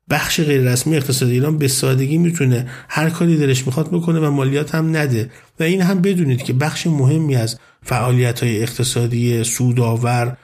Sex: male